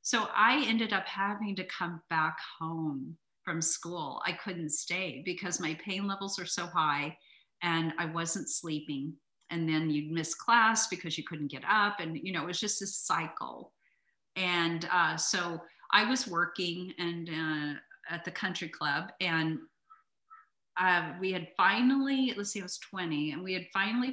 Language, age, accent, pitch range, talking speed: English, 40-59, American, 165-200 Hz, 170 wpm